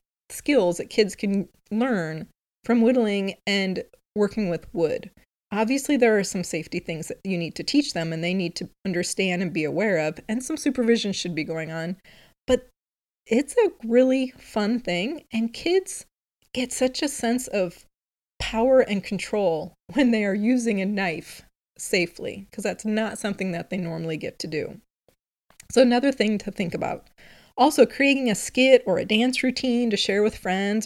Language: English